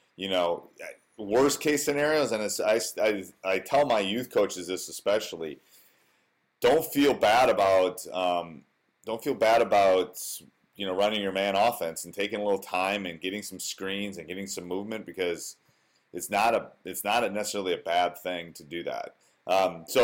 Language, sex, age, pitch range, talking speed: English, male, 30-49, 95-115 Hz, 180 wpm